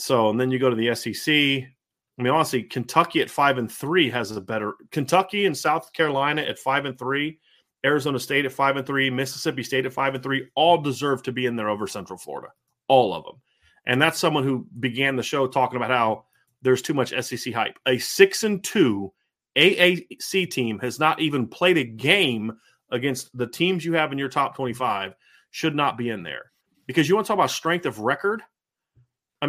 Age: 30-49